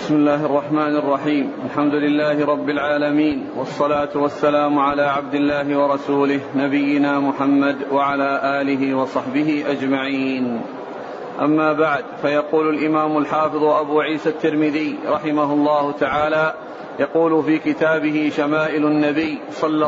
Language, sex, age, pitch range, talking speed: Arabic, male, 40-59, 150-160 Hz, 110 wpm